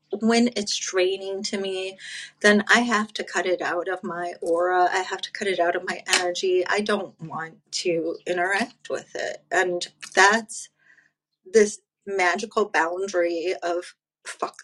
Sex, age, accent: female, 30-49, American